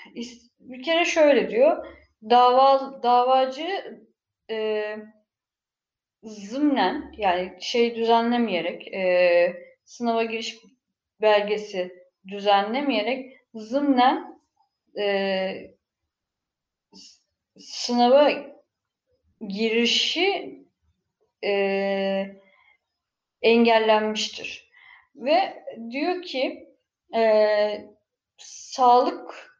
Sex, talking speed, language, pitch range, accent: female, 55 wpm, Turkish, 200-260 Hz, native